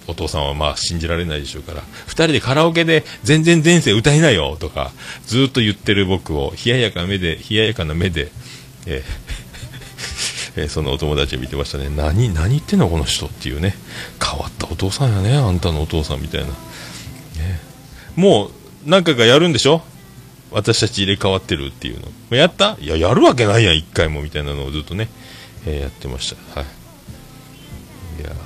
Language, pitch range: Japanese, 80-120 Hz